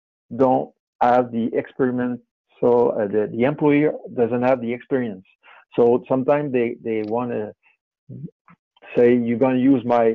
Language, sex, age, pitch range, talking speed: English, male, 60-79, 115-150 Hz, 150 wpm